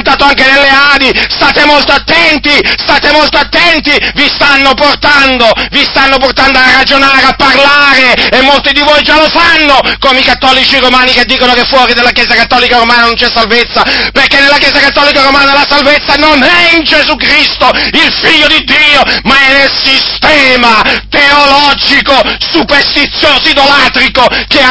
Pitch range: 255-290 Hz